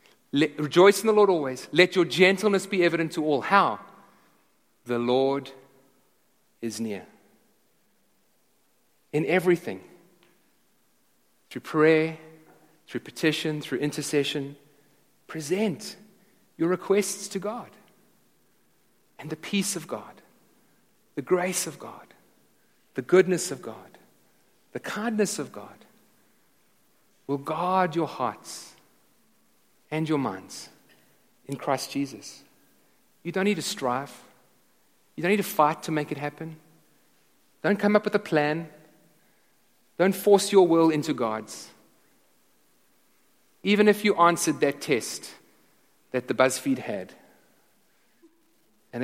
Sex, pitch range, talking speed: male, 135-195 Hz, 115 wpm